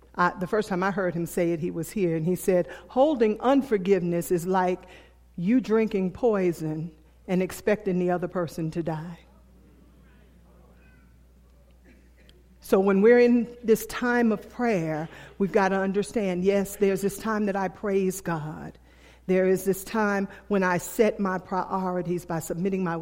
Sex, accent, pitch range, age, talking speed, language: female, American, 160-205 Hz, 50-69, 155 wpm, English